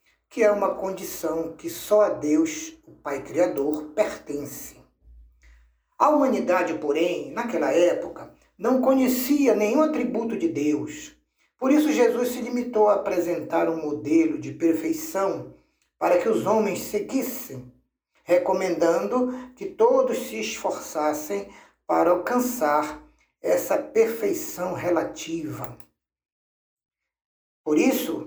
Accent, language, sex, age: Brazilian, Portuguese, male, 60-79